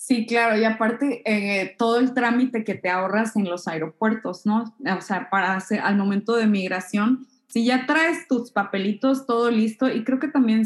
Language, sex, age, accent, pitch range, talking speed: Spanish, female, 20-39, Mexican, 200-255 Hz, 190 wpm